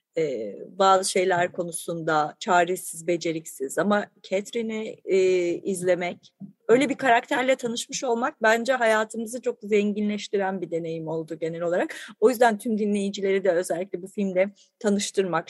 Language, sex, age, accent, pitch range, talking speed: Turkish, female, 30-49, native, 185-240 Hz, 130 wpm